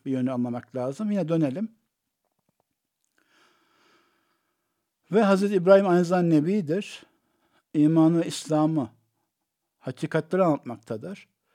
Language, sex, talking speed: Turkish, male, 85 wpm